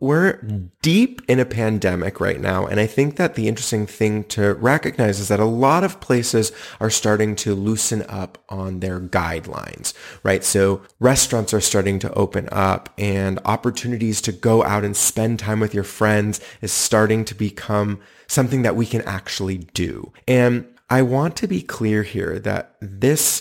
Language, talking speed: English, 175 wpm